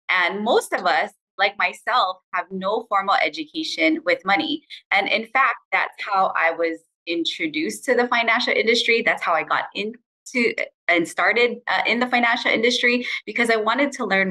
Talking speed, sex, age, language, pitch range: 170 wpm, female, 20-39, English, 180-245 Hz